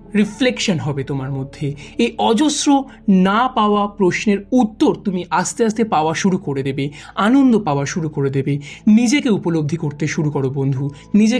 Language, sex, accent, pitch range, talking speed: Bengali, male, native, 155-225 Hz, 130 wpm